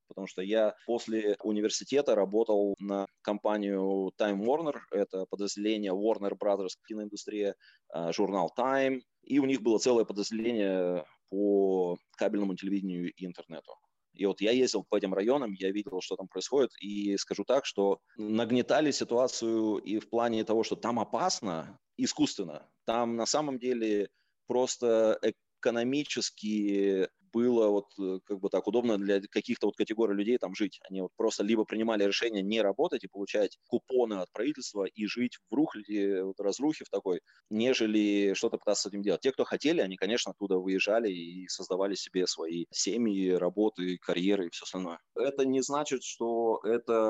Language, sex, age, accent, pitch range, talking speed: Russian, male, 20-39, native, 95-115 Hz, 155 wpm